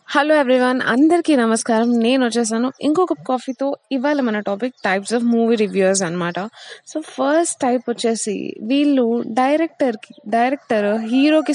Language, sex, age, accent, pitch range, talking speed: Telugu, female, 20-39, native, 205-255 Hz, 125 wpm